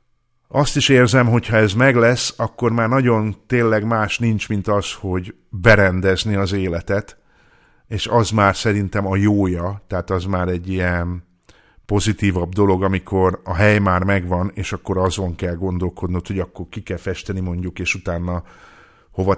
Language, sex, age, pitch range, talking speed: Hungarian, male, 50-69, 95-115 Hz, 160 wpm